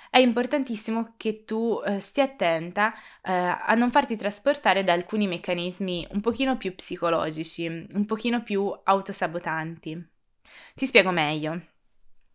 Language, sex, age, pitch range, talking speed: Italian, female, 20-39, 170-230 Hz, 115 wpm